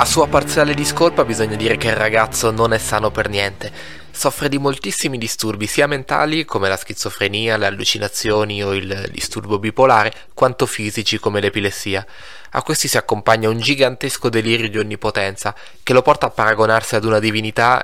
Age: 20-39